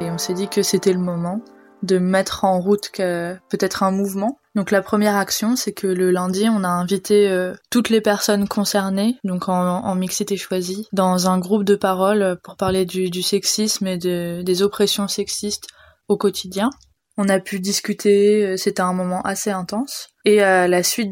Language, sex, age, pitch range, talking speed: French, female, 20-39, 190-215 Hz, 195 wpm